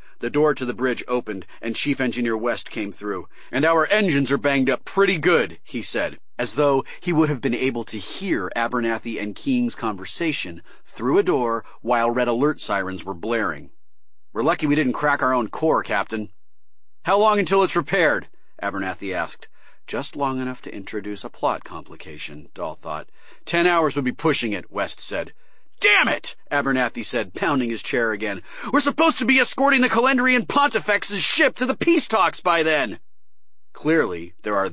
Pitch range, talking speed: 115-180 Hz, 180 wpm